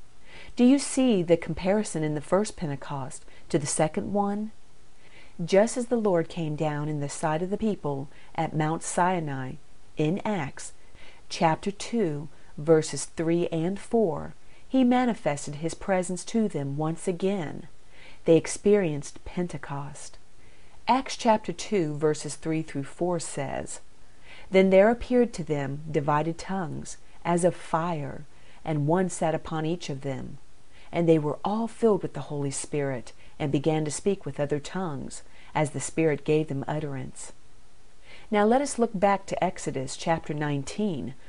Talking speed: 150 wpm